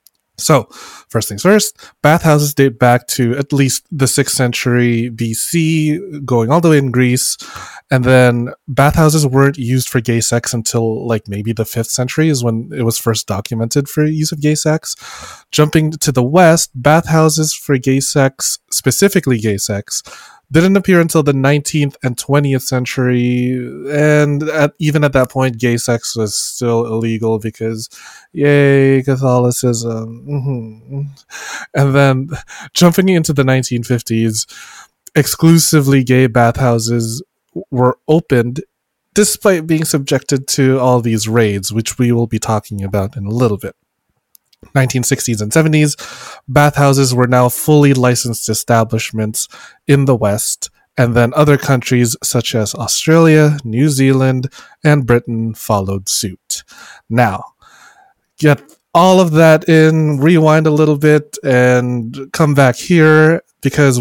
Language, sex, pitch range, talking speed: English, male, 120-150 Hz, 140 wpm